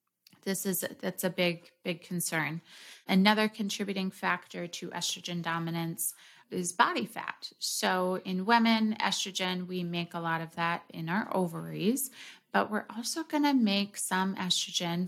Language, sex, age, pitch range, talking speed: English, female, 30-49, 175-210 Hz, 145 wpm